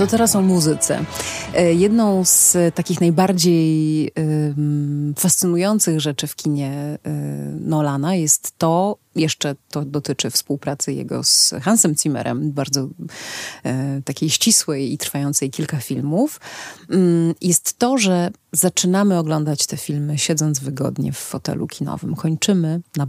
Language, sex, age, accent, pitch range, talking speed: Polish, female, 30-49, native, 145-175 Hz, 115 wpm